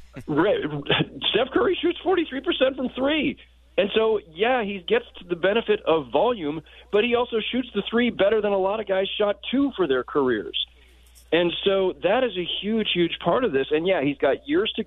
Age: 40-59